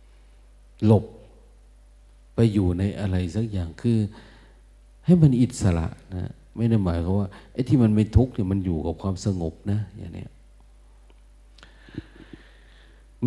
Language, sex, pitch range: Thai, male, 85-105 Hz